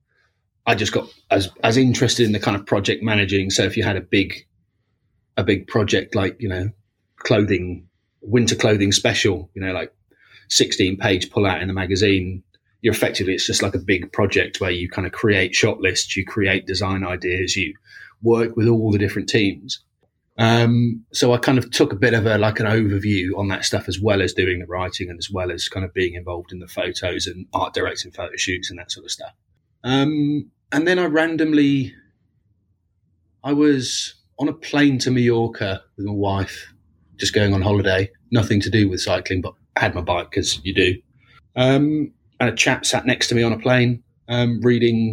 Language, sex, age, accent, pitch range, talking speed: English, male, 30-49, British, 95-115 Hz, 200 wpm